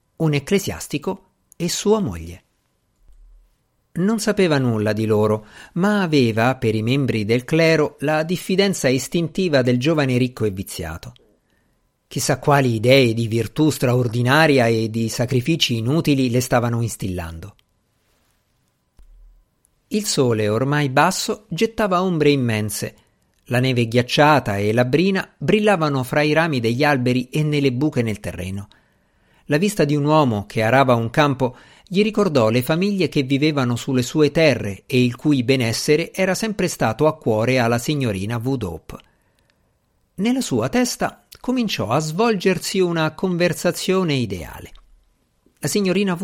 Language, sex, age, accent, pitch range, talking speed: Italian, male, 50-69, native, 115-160 Hz, 135 wpm